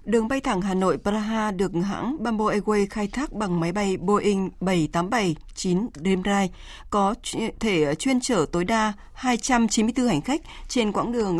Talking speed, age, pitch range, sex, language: 160 wpm, 20-39, 185-230 Hz, female, Vietnamese